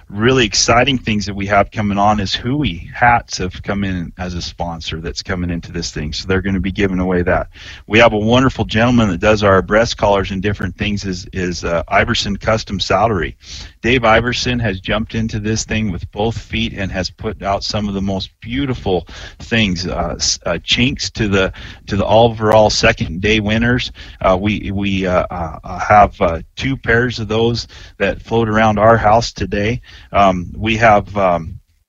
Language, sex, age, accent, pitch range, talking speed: English, male, 40-59, American, 90-115 Hz, 190 wpm